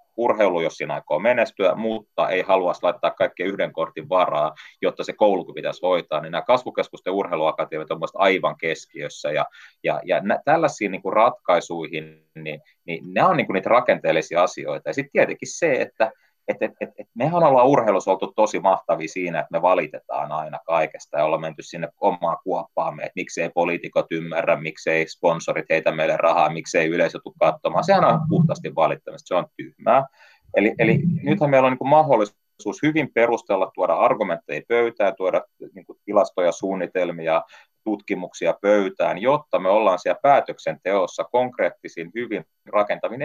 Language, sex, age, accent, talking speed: Finnish, male, 30-49, native, 155 wpm